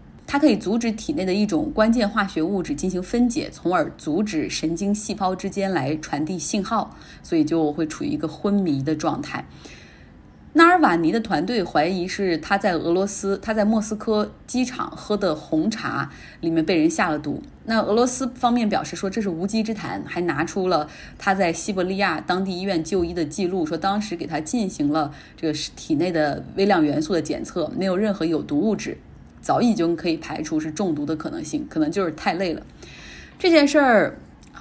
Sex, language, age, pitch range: female, Chinese, 20-39, 165-230 Hz